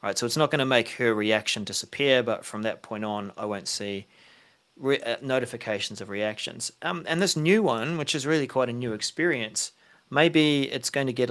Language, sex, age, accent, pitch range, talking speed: English, male, 30-49, Australian, 110-140 Hz, 210 wpm